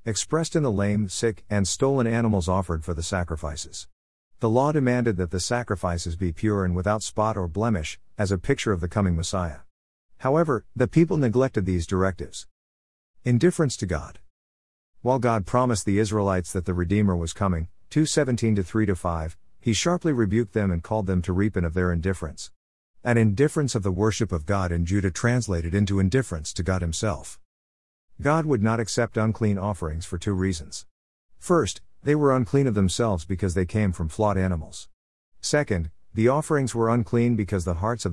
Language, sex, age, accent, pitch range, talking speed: English, male, 50-69, American, 85-115 Hz, 180 wpm